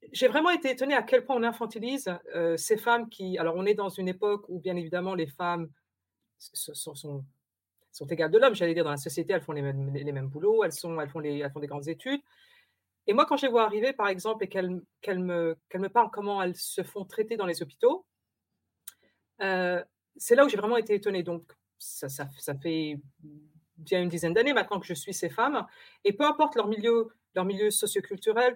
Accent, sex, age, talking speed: French, female, 40-59, 225 wpm